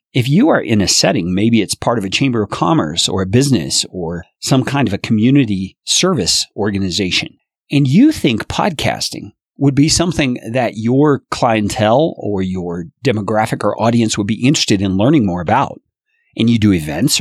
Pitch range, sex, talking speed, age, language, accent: 105-150 Hz, male, 180 wpm, 40-59, English, American